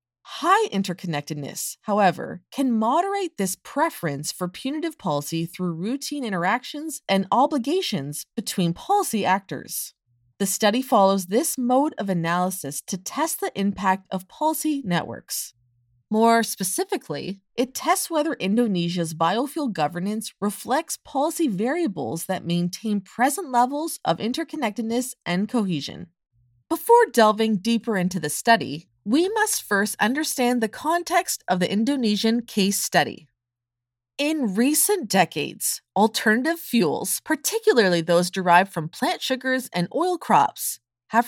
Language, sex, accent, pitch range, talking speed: English, female, American, 175-280 Hz, 120 wpm